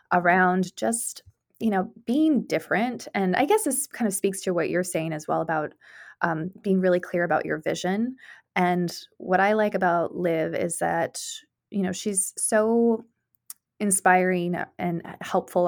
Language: English